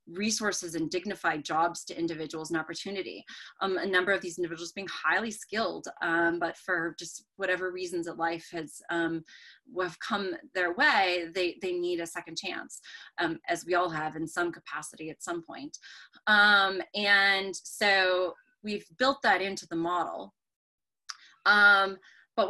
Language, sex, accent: English, female, American